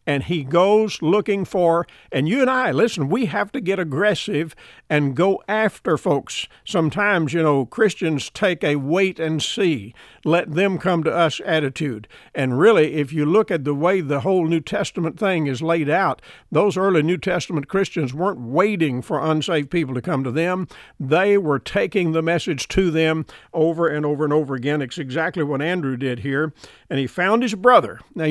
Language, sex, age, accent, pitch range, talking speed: English, male, 60-79, American, 150-195 Hz, 175 wpm